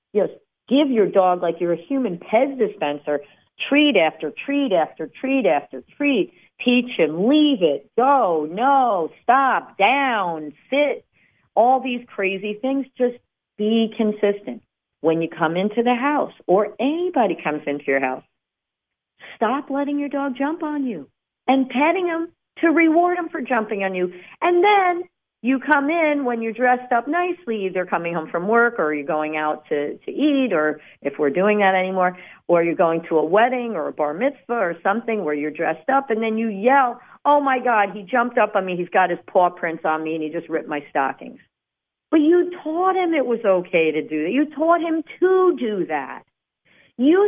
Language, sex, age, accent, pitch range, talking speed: English, female, 40-59, American, 170-280 Hz, 190 wpm